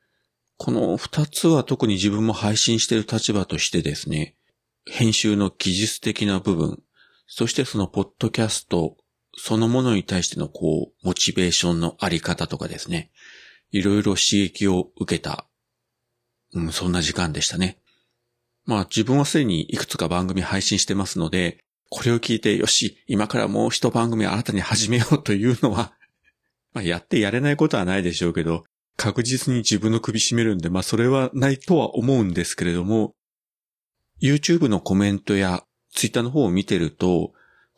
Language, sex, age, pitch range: Japanese, male, 40-59, 95-120 Hz